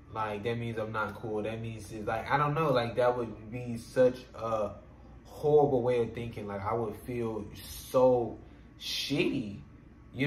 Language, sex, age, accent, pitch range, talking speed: English, male, 20-39, American, 105-125 Hz, 170 wpm